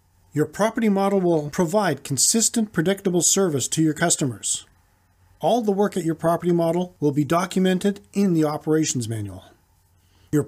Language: English